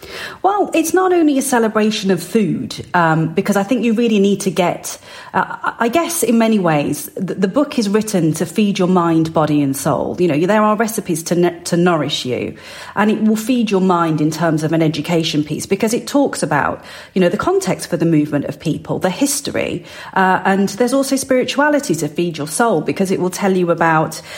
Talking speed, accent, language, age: 210 wpm, British, English, 40-59